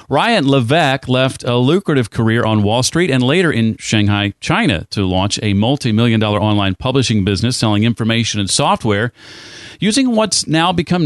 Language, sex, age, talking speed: English, male, 40-59, 170 wpm